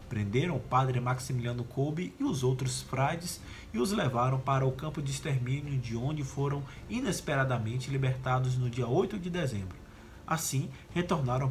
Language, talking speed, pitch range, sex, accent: Portuguese, 150 wpm, 120-150 Hz, male, Brazilian